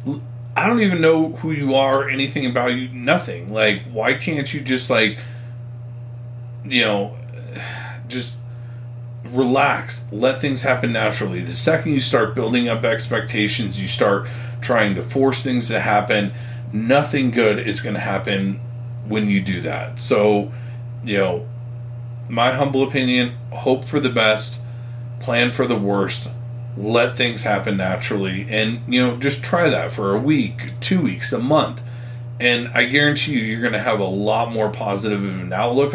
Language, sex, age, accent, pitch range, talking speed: English, male, 40-59, American, 105-125 Hz, 160 wpm